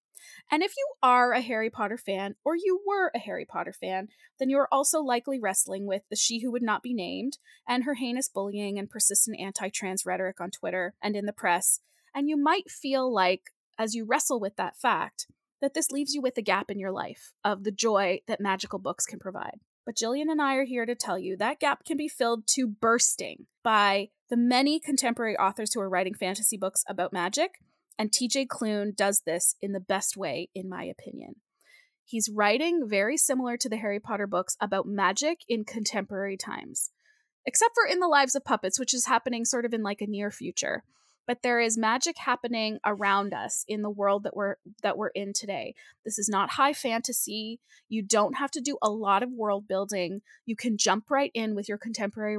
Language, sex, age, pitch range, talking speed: English, female, 20-39, 200-260 Hz, 205 wpm